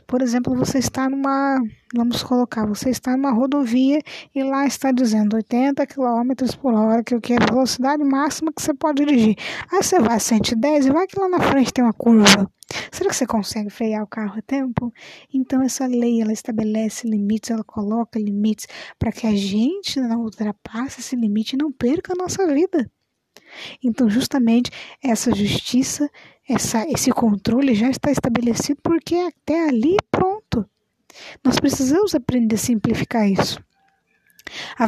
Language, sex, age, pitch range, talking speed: Portuguese, female, 20-39, 230-285 Hz, 160 wpm